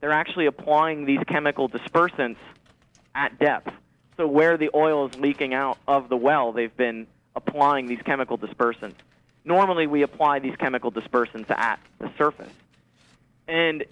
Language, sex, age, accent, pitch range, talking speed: English, male, 30-49, American, 125-155 Hz, 145 wpm